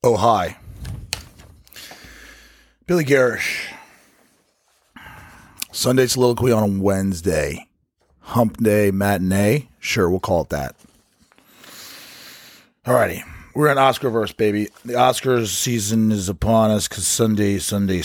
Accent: American